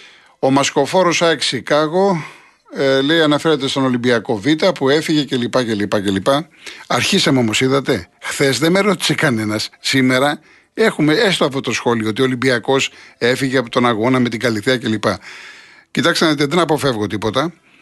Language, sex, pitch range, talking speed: Greek, male, 105-140 Hz, 160 wpm